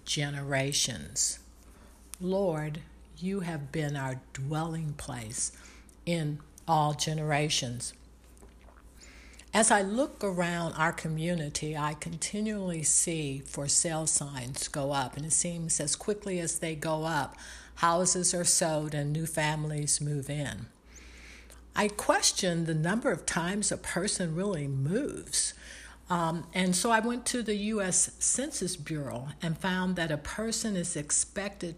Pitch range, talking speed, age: 145-185 Hz, 130 wpm, 60-79